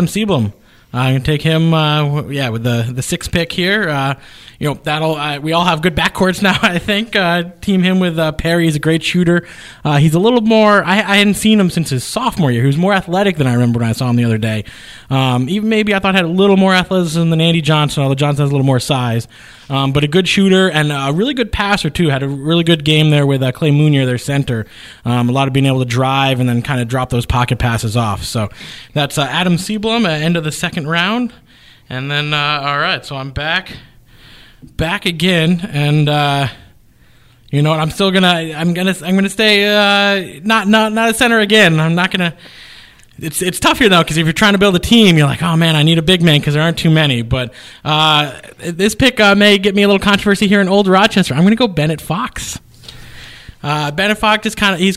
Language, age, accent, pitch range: English, 20-39, American, 135-185 Hz